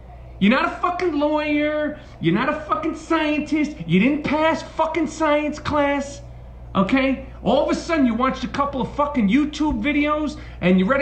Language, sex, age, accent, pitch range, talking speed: English, male, 40-59, American, 205-295 Hz, 175 wpm